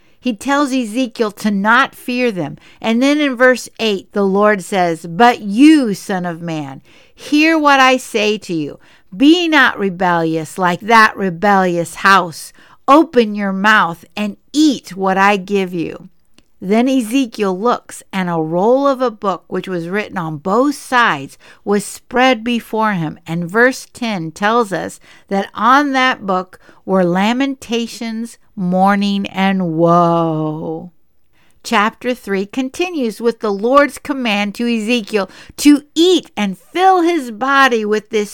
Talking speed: 145 wpm